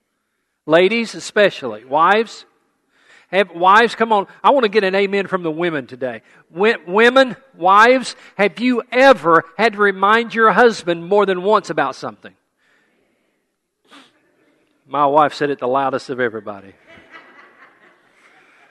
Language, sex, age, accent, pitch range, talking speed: English, male, 50-69, American, 165-230 Hz, 130 wpm